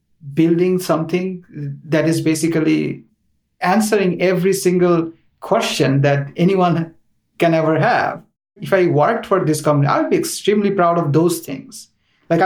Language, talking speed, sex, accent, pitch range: English, 140 wpm, male, Indian, 150-190 Hz